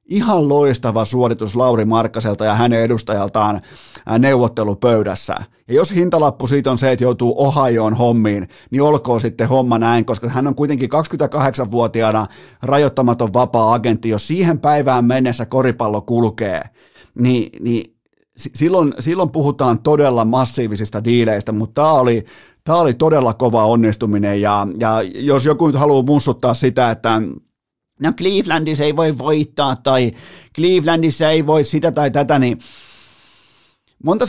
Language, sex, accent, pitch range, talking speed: Finnish, male, native, 115-145 Hz, 130 wpm